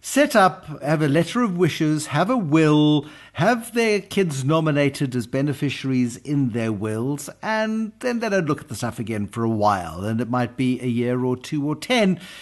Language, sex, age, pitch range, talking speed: English, male, 60-79, 125-175 Hz, 200 wpm